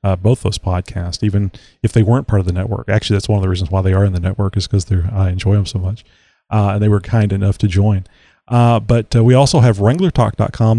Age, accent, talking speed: 40-59, American, 260 wpm